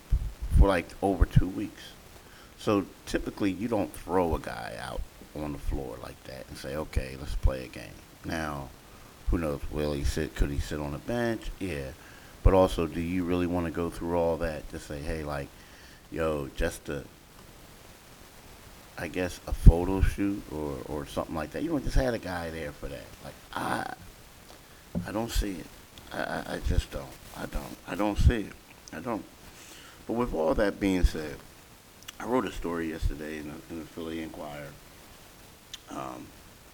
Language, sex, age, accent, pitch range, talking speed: English, male, 50-69, American, 75-95 Hz, 180 wpm